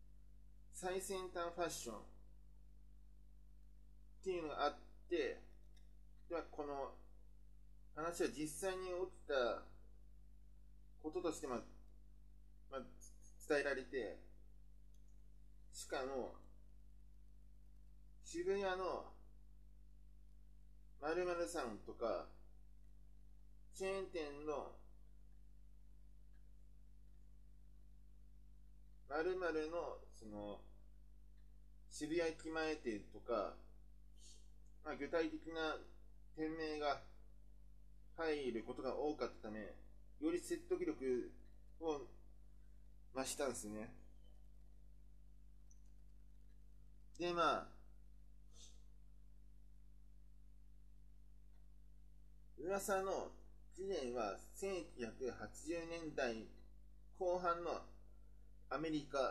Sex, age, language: male, 30-49, Japanese